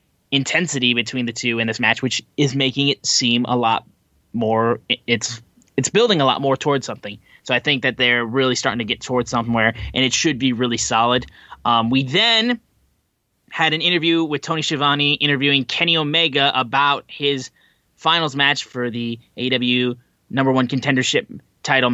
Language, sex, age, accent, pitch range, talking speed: English, male, 20-39, American, 120-145 Hz, 170 wpm